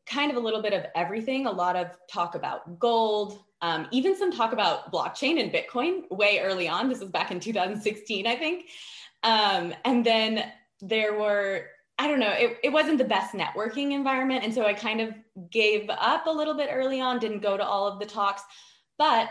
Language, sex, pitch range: English, female, 185-245 Hz